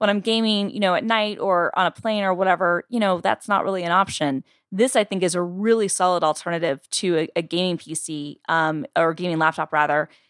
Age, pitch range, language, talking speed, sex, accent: 20-39, 165-200 Hz, English, 220 wpm, female, American